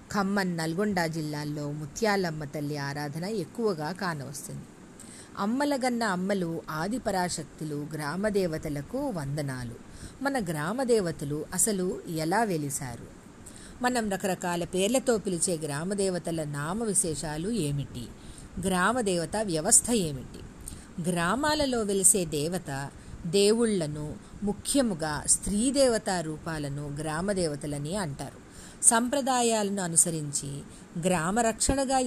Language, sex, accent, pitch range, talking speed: Telugu, female, native, 155-215 Hz, 85 wpm